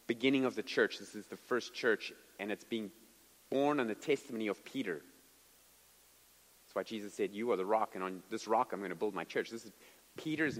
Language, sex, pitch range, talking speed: English, male, 145-225 Hz, 220 wpm